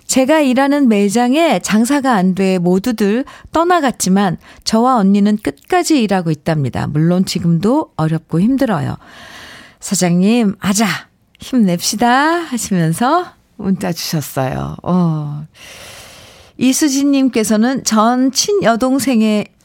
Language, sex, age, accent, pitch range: Korean, female, 50-69, native, 180-255 Hz